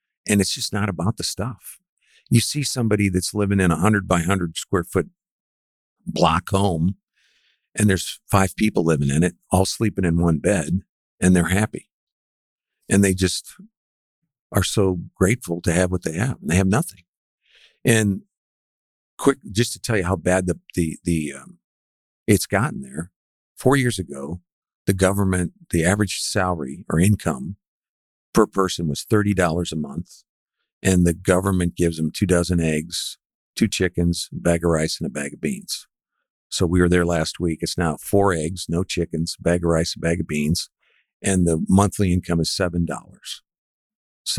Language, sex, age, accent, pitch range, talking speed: English, male, 50-69, American, 85-105 Hz, 170 wpm